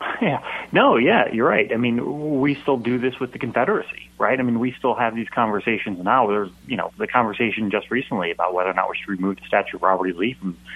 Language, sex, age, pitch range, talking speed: English, male, 30-49, 95-120 Hz, 245 wpm